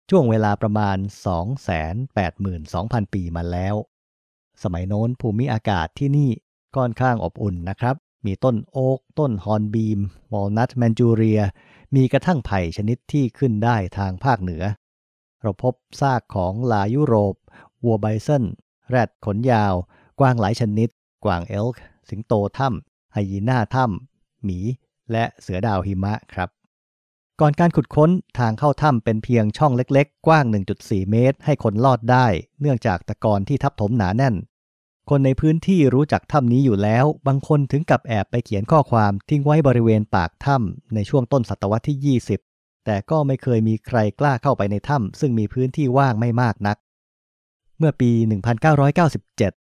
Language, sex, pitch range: English, male, 100-135 Hz